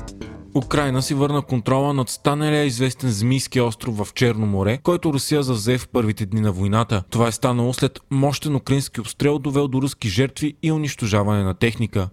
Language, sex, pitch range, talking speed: Bulgarian, male, 115-145 Hz, 175 wpm